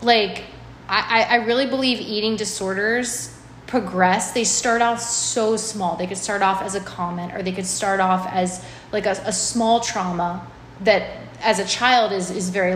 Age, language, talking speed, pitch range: 20-39, English, 180 wpm, 190-235 Hz